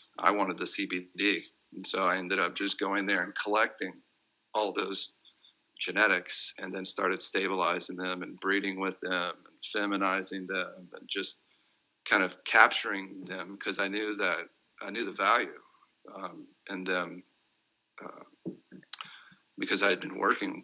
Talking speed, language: 150 wpm, English